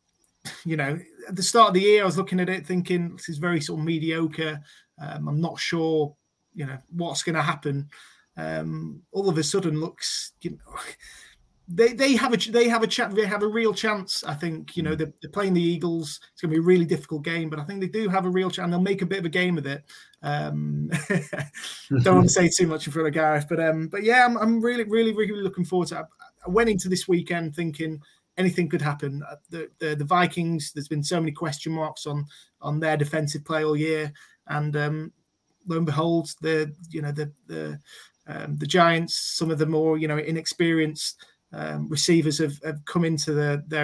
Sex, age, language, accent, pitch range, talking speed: male, 20-39, English, British, 150-175 Hz, 225 wpm